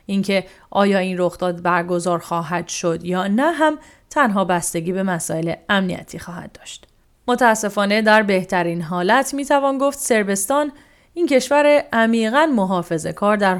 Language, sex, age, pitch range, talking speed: English, female, 30-49, 175-220 Hz, 130 wpm